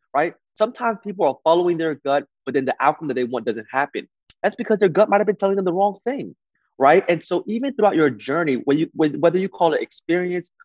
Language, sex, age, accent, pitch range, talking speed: English, male, 20-39, American, 130-180 Hz, 220 wpm